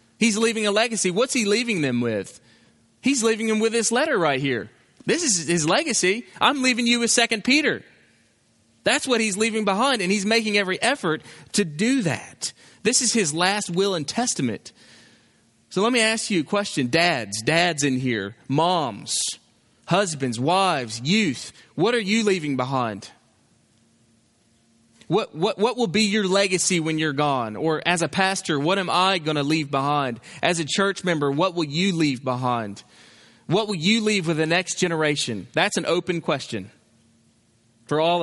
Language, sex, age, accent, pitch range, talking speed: English, male, 30-49, American, 125-185 Hz, 175 wpm